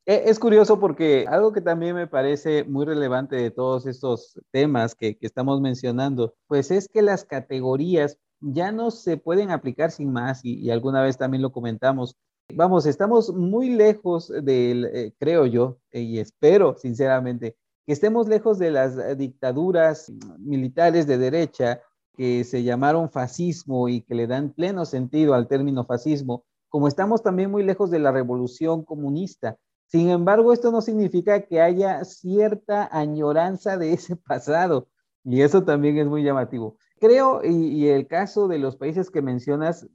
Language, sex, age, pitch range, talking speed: Spanish, male, 40-59, 130-175 Hz, 160 wpm